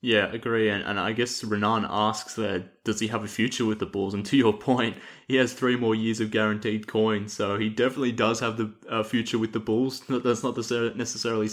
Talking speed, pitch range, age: 230 wpm, 100-115 Hz, 20-39